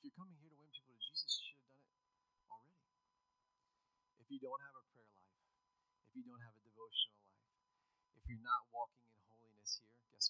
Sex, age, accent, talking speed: male, 30-49, American, 215 wpm